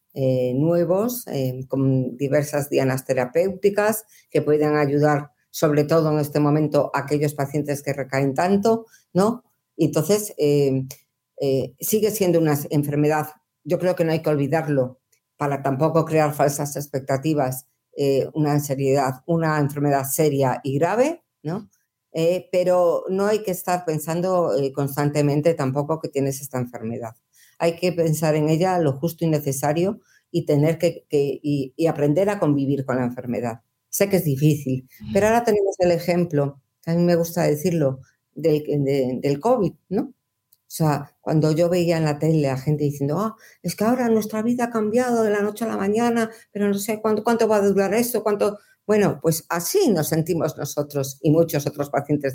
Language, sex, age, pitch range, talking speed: Spanish, female, 50-69, 140-180 Hz, 165 wpm